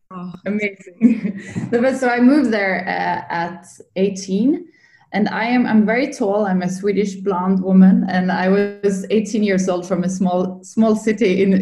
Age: 20-39